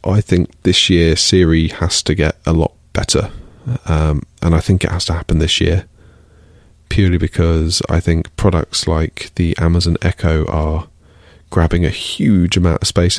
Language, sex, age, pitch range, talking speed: English, male, 30-49, 80-95 Hz, 170 wpm